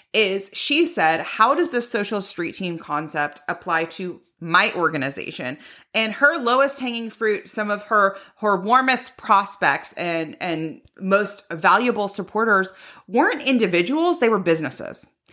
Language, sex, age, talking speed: English, female, 30-49, 135 wpm